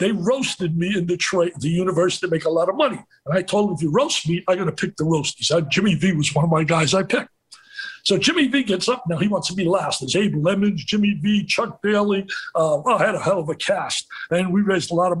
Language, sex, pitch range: English, male, 180-245 Hz